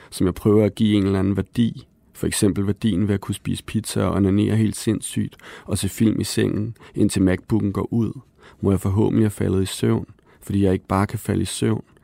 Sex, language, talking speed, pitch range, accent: male, Danish, 225 wpm, 95-110 Hz, native